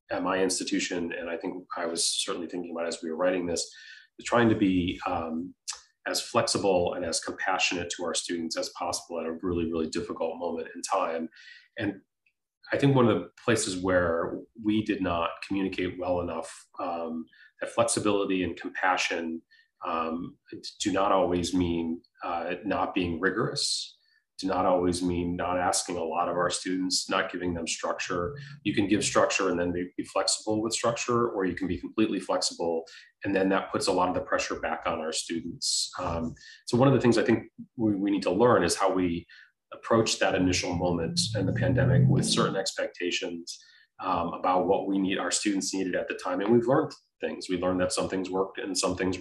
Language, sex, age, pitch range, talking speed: English, male, 30-49, 85-95 Hz, 195 wpm